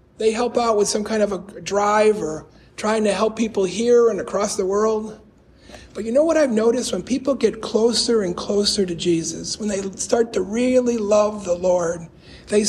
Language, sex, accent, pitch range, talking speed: English, male, American, 200-245 Hz, 200 wpm